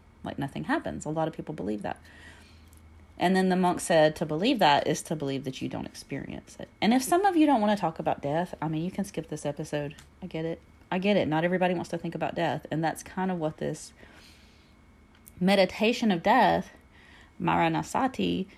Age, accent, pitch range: 30-49, American, 115-165 Hz